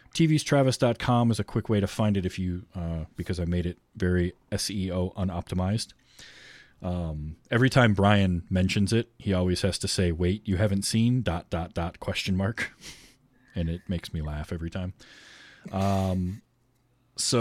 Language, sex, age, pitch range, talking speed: English, male, 20-39, 85-110 Hz, 165 wpm